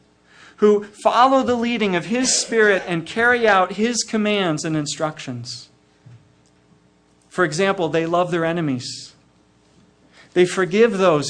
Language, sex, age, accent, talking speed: English, male, 40-59, American, 120 wpm